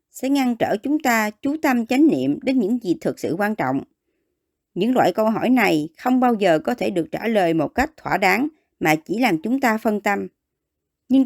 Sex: male